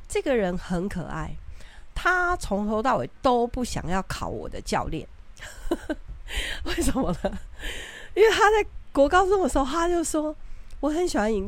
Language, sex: Chinese, female